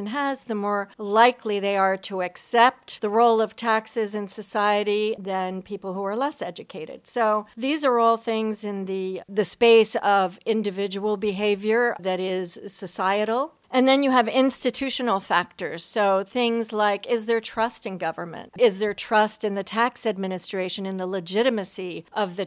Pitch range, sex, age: 185-225 Hz, female, 50-69